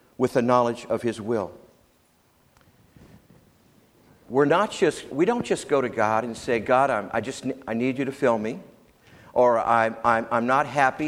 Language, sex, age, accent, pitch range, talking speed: English, male, 60-79, American, 120-145 Hz, 180 wpm